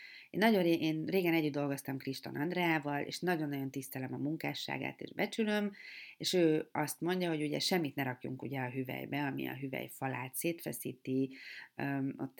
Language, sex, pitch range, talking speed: Hungarian, female, 140-170 Hz, 155 wpm